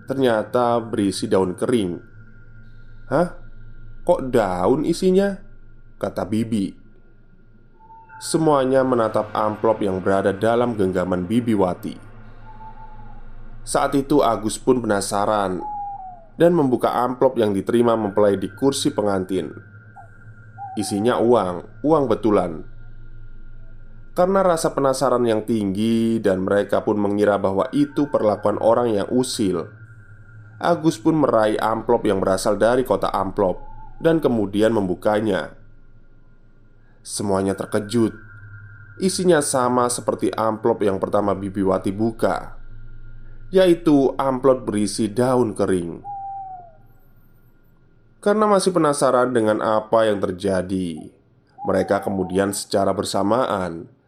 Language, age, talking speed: Indonesian, 20-39, 100 wpm